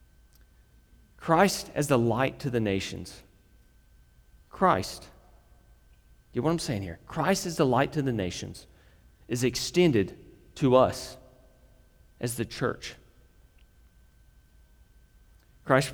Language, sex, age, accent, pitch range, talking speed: English, male, 40-59, American, 100-130 Hz, 110 wpm